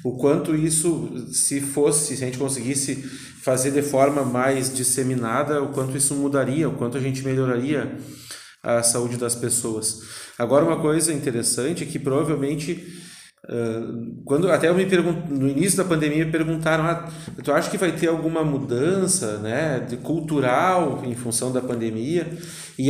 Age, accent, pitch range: 30-49, Brazilian, 130-165 Hz